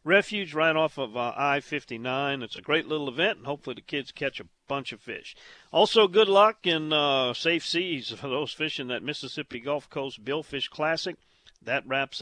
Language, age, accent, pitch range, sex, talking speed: English, 50-69, American, 130-170 Hz, male, 180 wpm